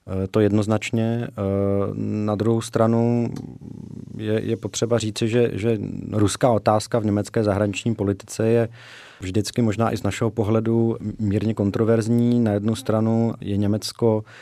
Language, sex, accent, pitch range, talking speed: Czech, male, native, 100-110 Hz, 130 wpm